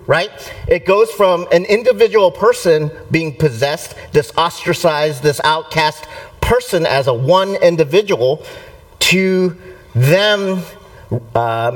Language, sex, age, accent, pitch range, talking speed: English, male, 50-69, American, 130-190 Hz, 105 wpm